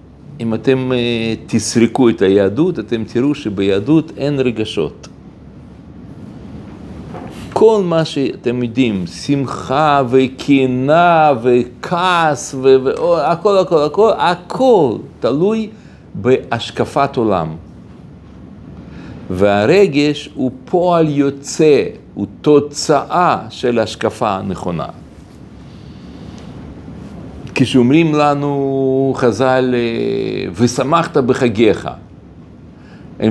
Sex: male